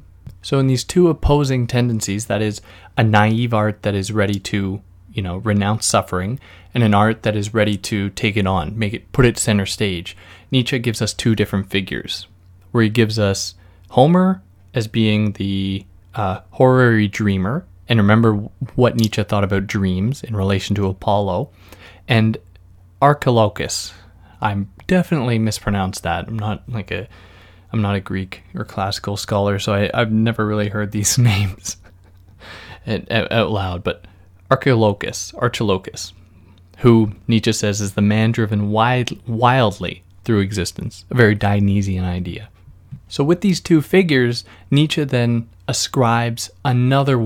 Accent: American